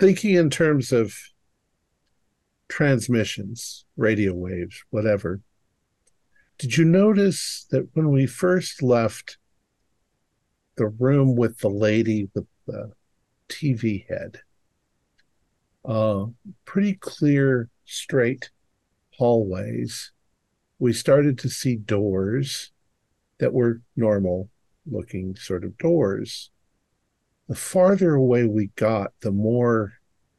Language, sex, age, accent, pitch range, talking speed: English, male, 50-69, American, 105-145 Hz, 95 wpm